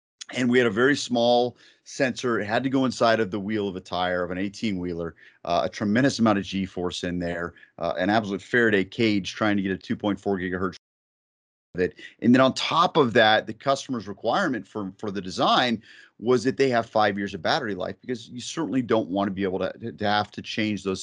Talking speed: 215 wpm